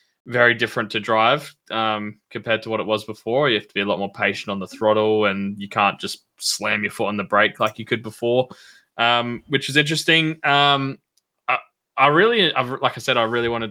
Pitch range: 105-125 Hz